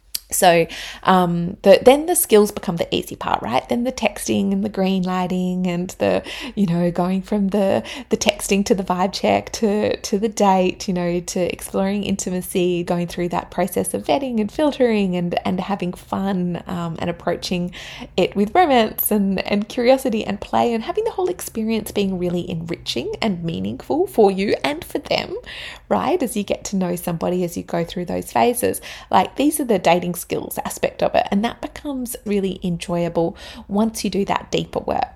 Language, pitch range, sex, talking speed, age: English, 175-220 Hz, female, 190 wpm, 20-39